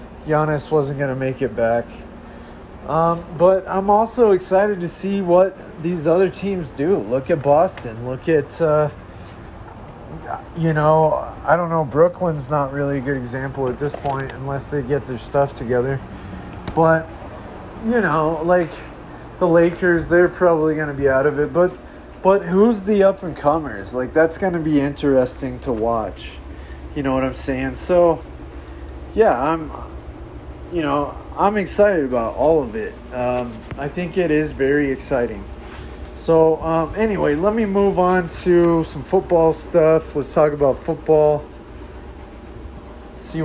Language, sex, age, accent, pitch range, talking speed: English, male, 30-49, American, 130-180 Hz, 155 wpm